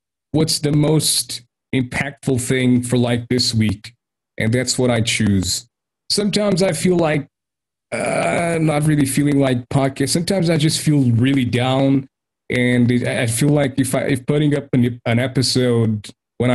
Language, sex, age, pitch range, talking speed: English, male, 30-49, 110-135 Hz, 160 wpm